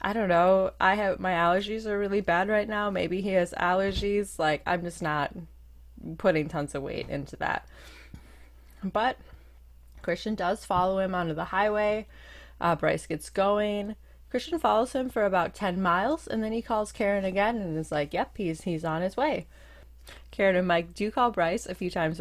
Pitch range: 160-215 Hz